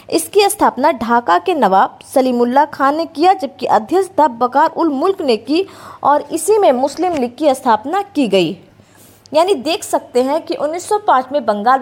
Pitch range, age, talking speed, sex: 245-355 Hz, 20-39, 170 wpm, female